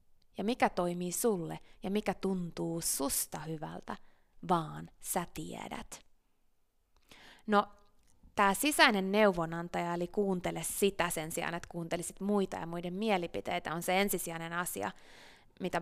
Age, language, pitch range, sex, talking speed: 20-39, Finnish, 180-235 Hz, female, 120 wpm